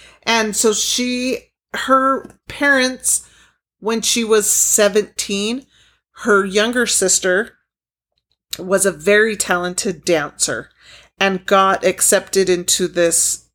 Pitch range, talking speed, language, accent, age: 175-210 Hz, 95 wpm, English, American, 40-59